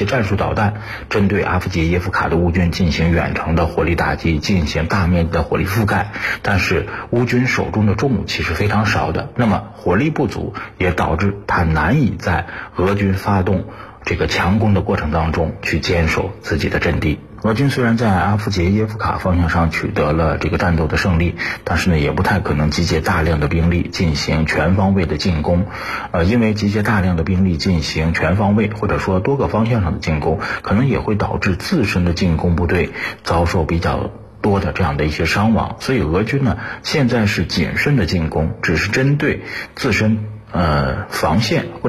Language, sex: Chinese, male